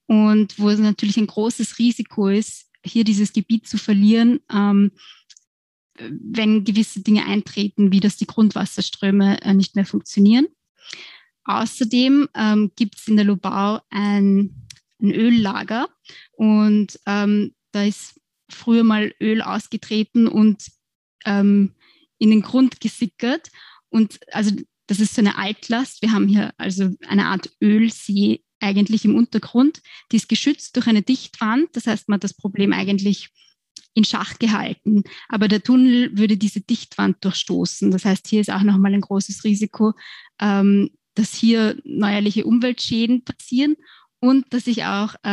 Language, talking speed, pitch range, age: German, 140 wpm, 200-235 Hz, 20-39